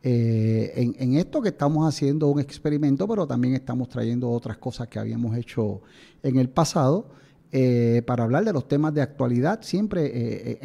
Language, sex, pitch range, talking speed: Spanish, male, 125-155 Hz, 175 wpm